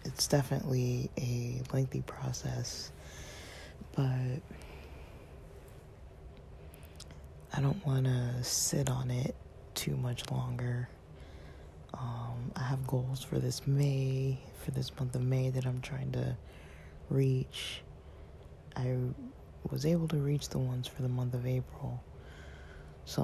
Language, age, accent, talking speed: English, 20-39, American, 120 wpm